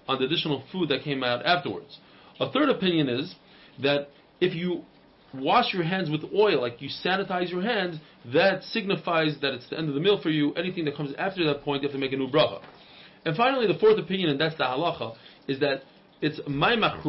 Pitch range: 145-195 Hz